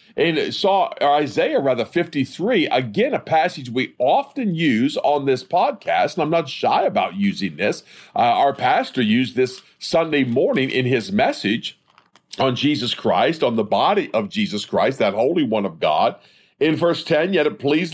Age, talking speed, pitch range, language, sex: 50-69, 170 wpm, 135-195 Hz, English, male